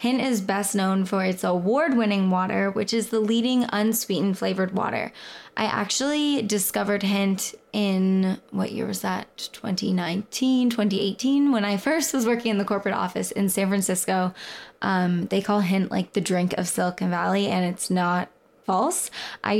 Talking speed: 160 wpm